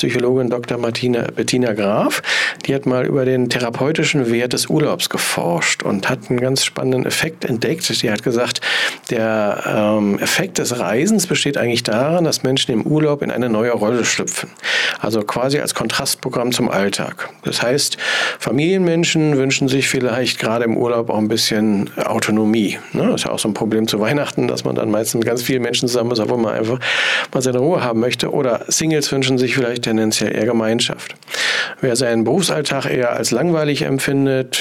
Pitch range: 115-140 Hz